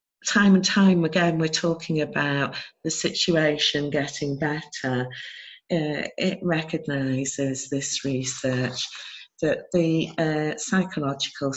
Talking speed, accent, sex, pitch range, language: 105 wpm, British, female, 130-160 Hz, English